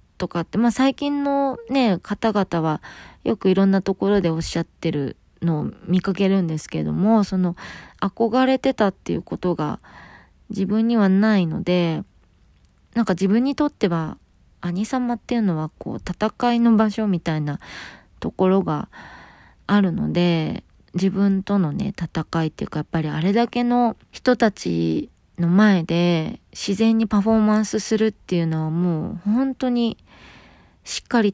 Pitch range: 165-205 Hz